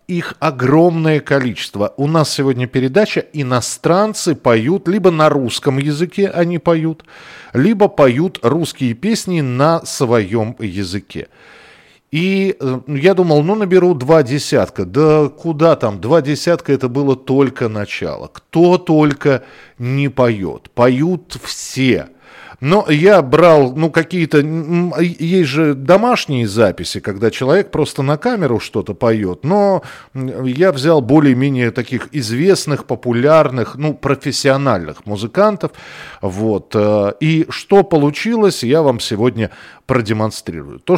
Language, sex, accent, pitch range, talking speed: Russian, male, native, 120-165 Hz, 115 wpm